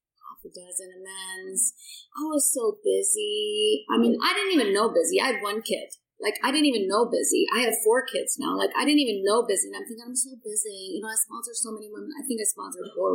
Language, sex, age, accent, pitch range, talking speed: English, female, 30-49, American, 215-300 Hz, 235 wpm